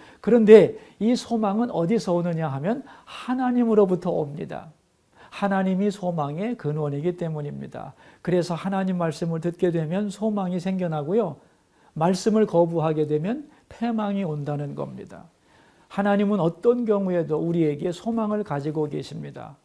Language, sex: Korean, male